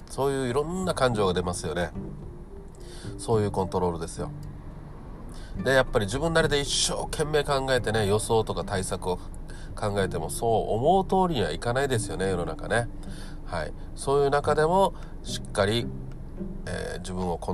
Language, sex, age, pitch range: Japanese, male, 40-59, 90-130 Hz